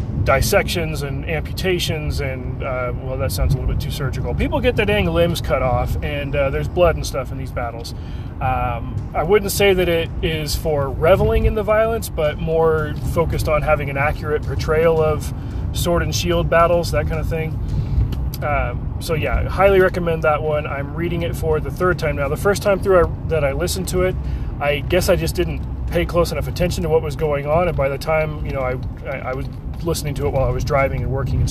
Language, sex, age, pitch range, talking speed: English, male, 30-49, 125-165 Hz, 225 wpm